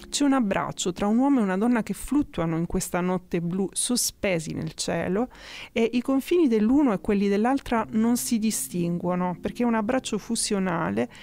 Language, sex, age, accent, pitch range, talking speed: Italian, female, 30-49, native, 180-240 Hz, 175 wpm